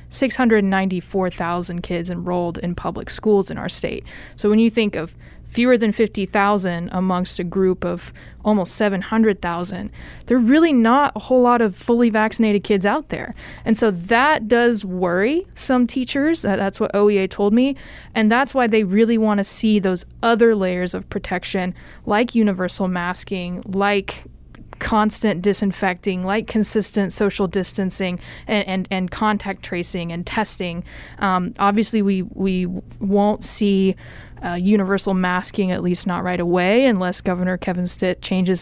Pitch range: 185-220 Hz